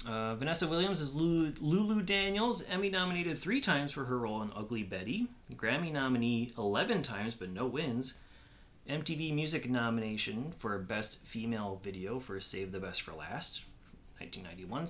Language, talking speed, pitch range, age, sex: English, 145 wpm, 100-135 Hz, 30-49, male